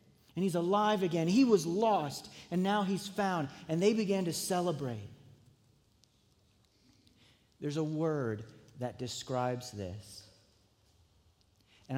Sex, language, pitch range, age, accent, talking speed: male, English, 105-150 Hz, 40-59, American, 115 wpm